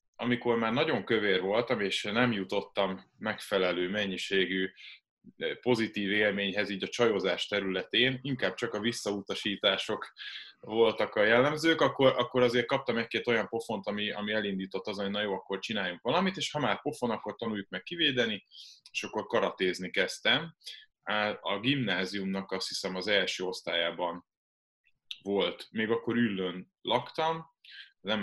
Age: 20-39